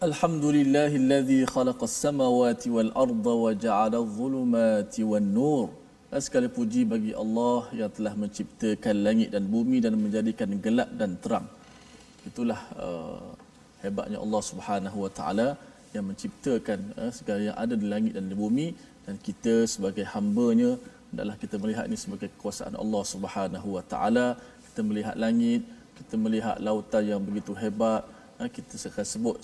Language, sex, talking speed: Malayalam, male, 125 wpm